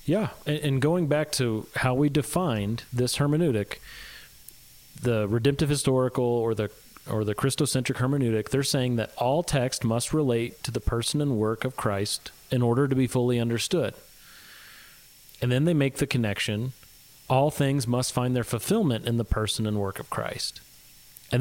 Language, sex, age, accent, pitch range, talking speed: English, male, 30-49, American, 115-145 Hz, 165 wpm